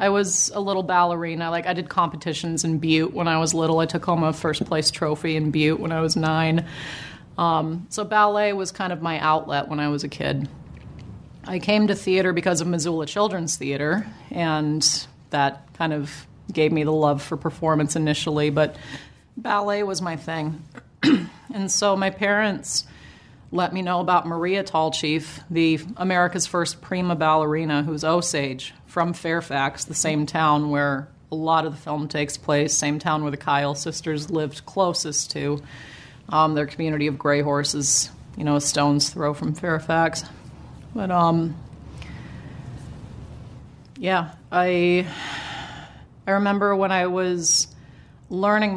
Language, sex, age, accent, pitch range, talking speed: English, female, 30-49, American, 150-180 Hz, 155 wpm